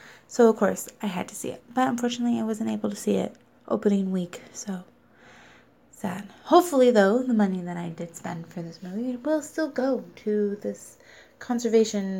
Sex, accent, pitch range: female, American, 180-240 Hz